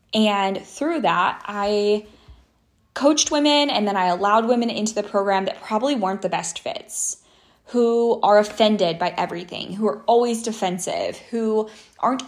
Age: 20-39